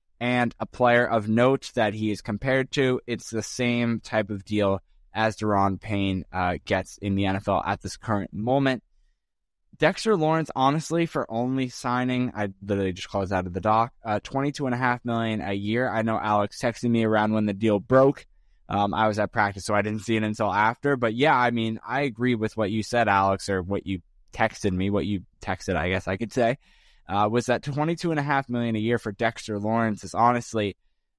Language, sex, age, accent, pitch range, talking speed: English, male, 10-29, American, 105-125 Hz, 210 wpm